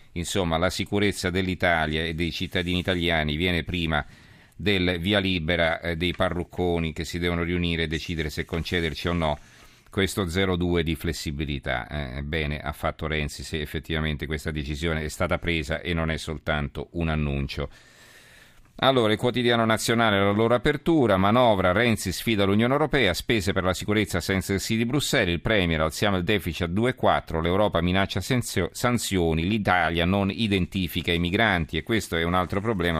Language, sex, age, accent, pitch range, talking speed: Italian, male, 40-59, native, 80-100 Hz, 170 wpm